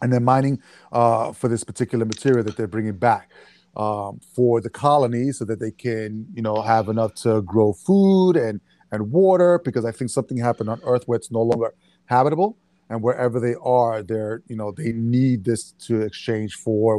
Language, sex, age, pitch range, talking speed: English, male, 30-49, 110-130 Hz, 195 wpm